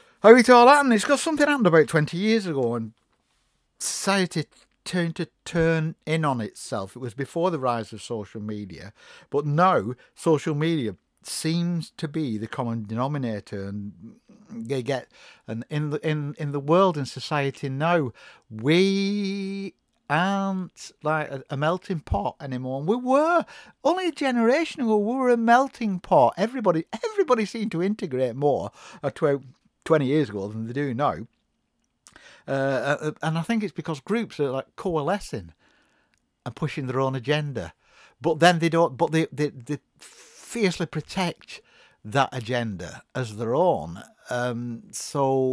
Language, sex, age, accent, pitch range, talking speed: English, male, 60-79, British, 130-195 Hz, 155 wpm